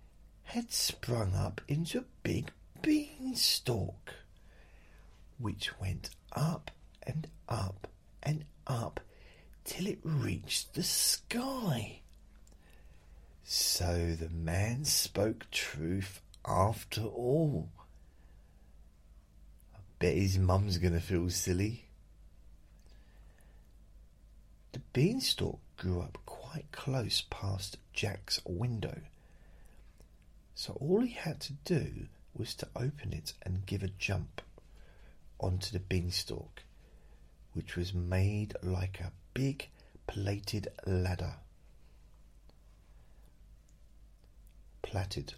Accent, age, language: British, 40-59, English